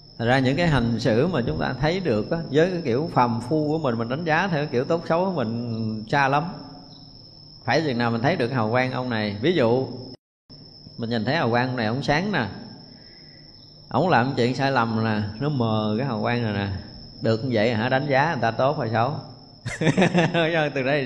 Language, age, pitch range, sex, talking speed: Vietnamese, 20-39, 120-150 Hz, male, 220 wpm